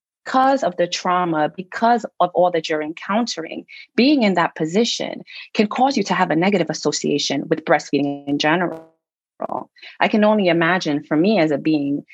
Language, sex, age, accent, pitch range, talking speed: English, female, 30-49, American, 150-200 Hz, 175 wpm